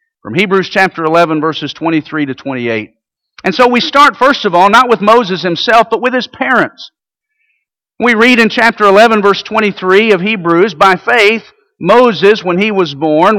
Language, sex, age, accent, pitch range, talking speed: English, male, 50-69, American, 175-230 Hz, 175 wpm